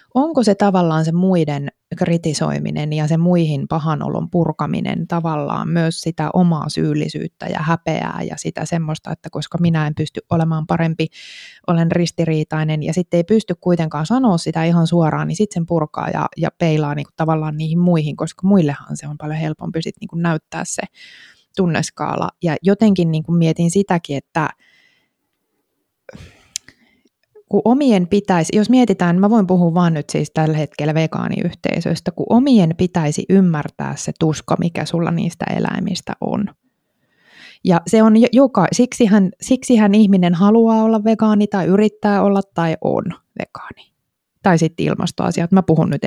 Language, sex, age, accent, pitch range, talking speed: Finnish, female, 20-39, native, 160-205 Hz, 150 wpm